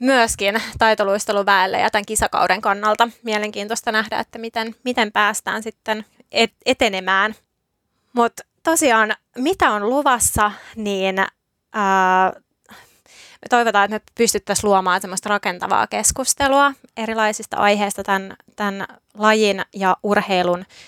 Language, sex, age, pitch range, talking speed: Finnish, female, 20-39, 190-225 Hz, 105 wpm